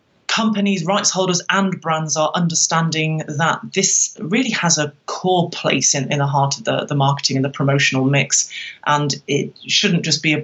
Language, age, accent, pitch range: English, 30-49, British, 145-175 Hz